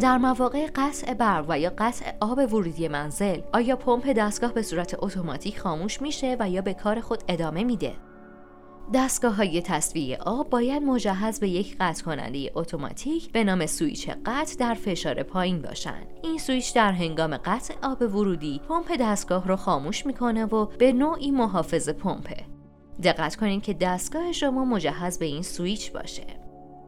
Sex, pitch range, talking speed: female, 175-260 Hz, 155 wpm